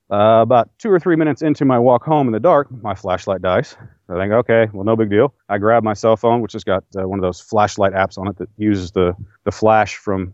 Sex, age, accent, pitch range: male, 30-49, American, 100-125 Hz